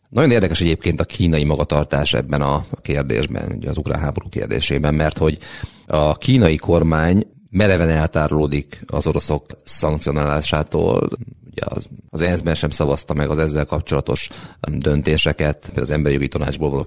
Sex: male